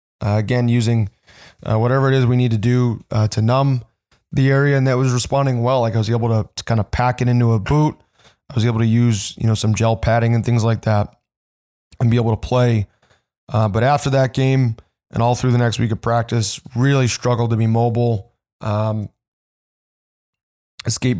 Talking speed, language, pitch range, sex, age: 205 wpm, English, 110-125 Hz, male, 20-39